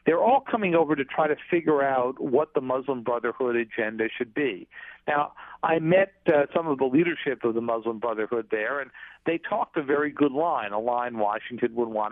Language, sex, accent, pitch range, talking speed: English, male, American, 120-160 Hz, 205 wpm